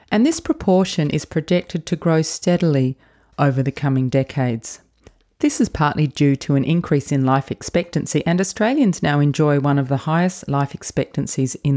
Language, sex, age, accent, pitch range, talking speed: English, female, 30-49, Australian, 130-165 Hz, 170 wpm